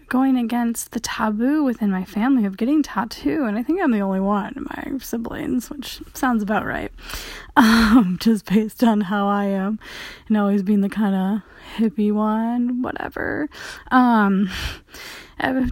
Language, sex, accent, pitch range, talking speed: English, female, American, 210-255 Hz, 155 wpm